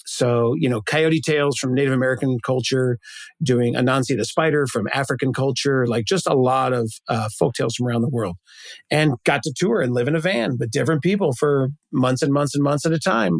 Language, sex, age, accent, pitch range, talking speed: English, male, 40-59, American, 125-155 Hz, 215 wpm